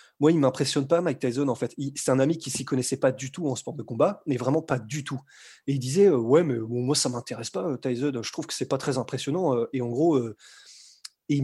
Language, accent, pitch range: French, French, 130-165 Hz